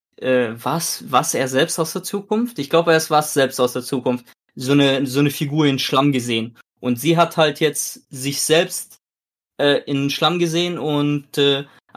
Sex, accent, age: male, German, 20-39